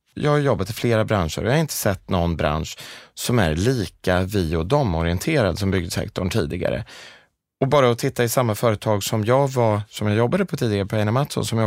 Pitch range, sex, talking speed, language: 95-130 Hz, male, 205 wpm, Swedish